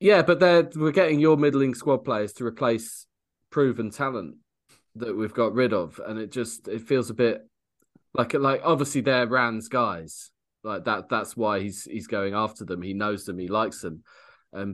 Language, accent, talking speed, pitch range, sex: English, British, 190 wpm, 105-135 Hz, male